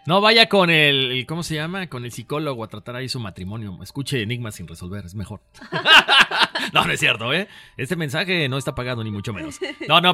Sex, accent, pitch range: male, Mexican, 125-180 Hz